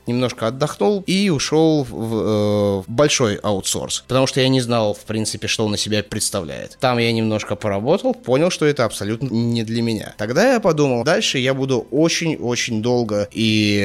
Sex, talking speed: male, 180 wpm